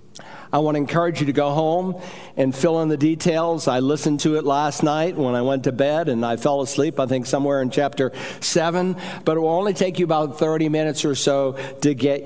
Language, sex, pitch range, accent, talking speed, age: English, male, 140-160 Hz, American, 230 wpm, 50-69